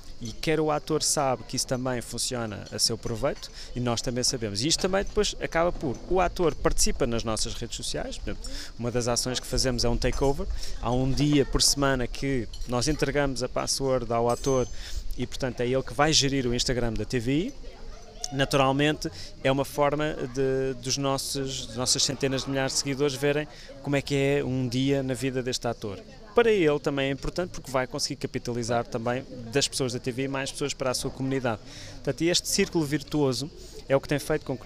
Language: Portuguese